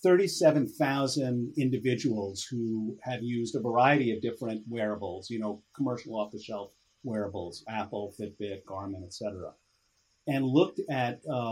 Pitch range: 105-135 Hz